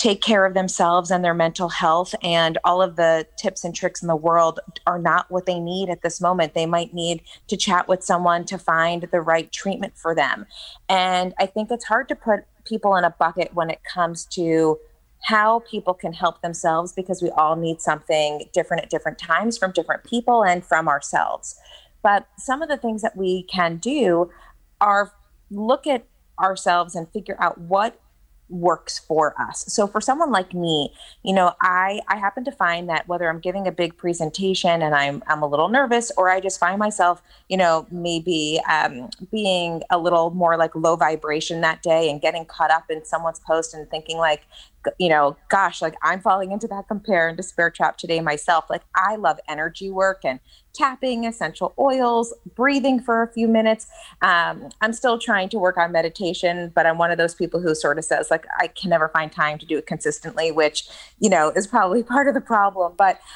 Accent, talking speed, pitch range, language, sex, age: American, 205 wpm, 165-205 Hz, English, female, 30-49